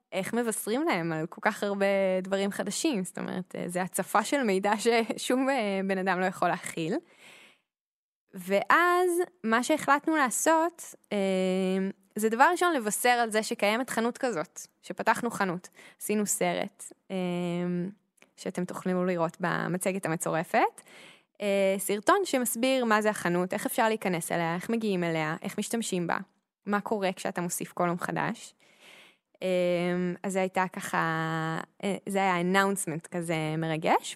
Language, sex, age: Hebrew, female, 10-29